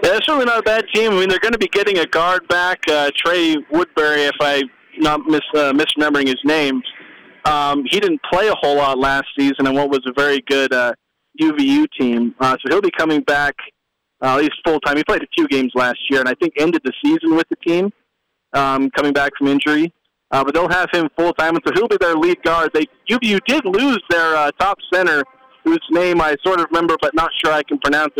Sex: male